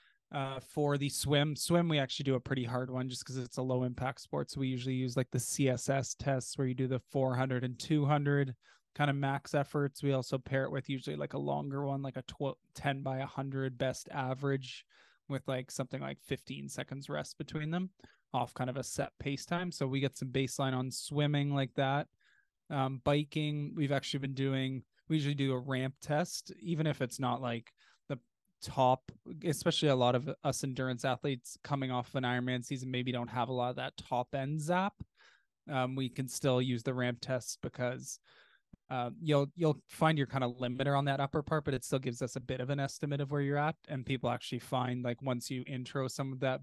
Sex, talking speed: male, 215 wpm